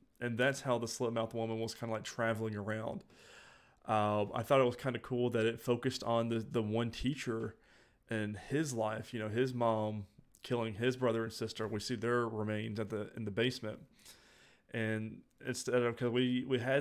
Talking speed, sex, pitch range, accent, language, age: 200 wpm, male, 110-130 Hz, American, English, 30-49